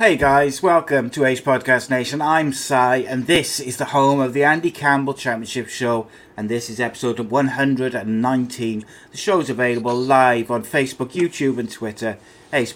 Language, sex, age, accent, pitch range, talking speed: English, male, 30-49, British, 115-140 Hz, 165 wpm